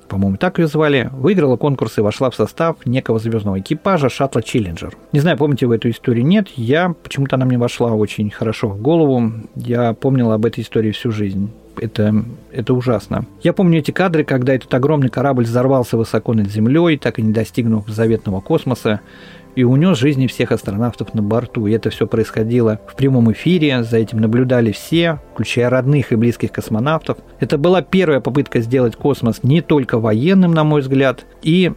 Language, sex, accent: Russian, male, native